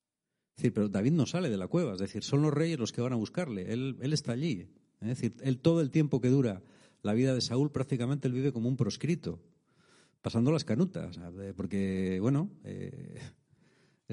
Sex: male